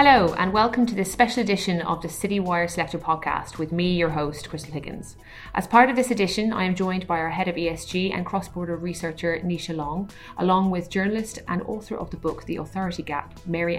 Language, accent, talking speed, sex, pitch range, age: English, Irish, 210 wpm, female, 160-190 Hz, 30-49